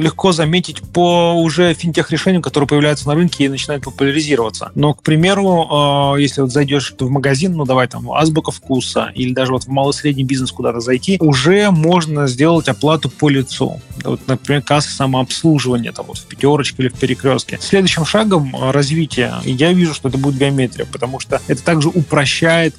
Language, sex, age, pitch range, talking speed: Russian, male, 30-49, 130-155 Hz, 170 wpm